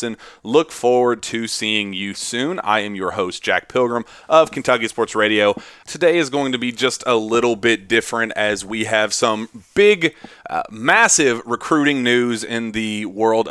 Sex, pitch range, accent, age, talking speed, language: male, 105-125 Hz, American, 30-49, 170 wpm, English